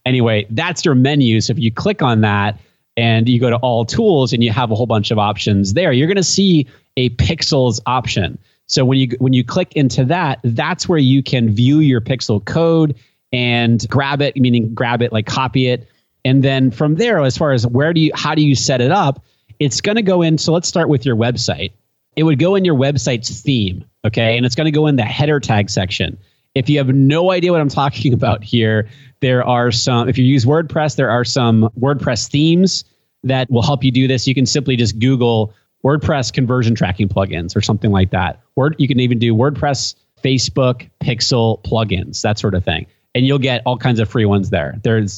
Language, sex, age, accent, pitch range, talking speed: English, male, 30-49, American, 110-140 Hz, 215 wpm